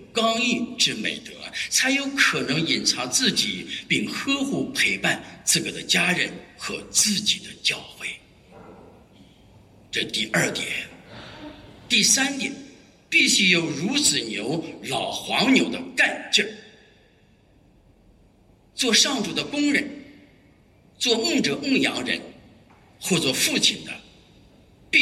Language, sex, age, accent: English, male, 50-69, Chinese